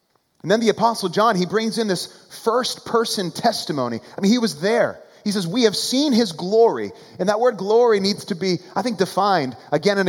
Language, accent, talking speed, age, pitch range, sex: English, American, 215 wpm, 30-49, 160-225 Hz, male